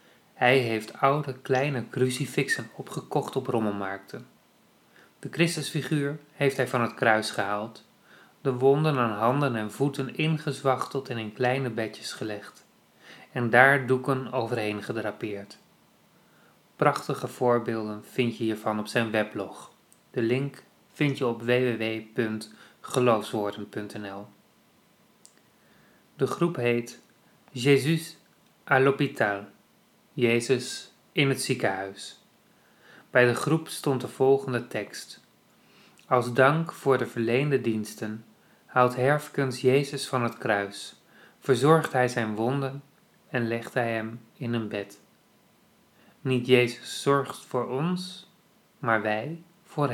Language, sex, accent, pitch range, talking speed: Dutch, male, Dutch, 115-140 Hz, 115 wpm